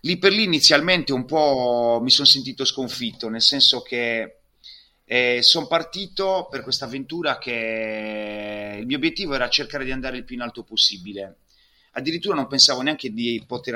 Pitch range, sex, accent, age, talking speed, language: 115-145 Hz, male, native, 30-49, 165 wpm, Italian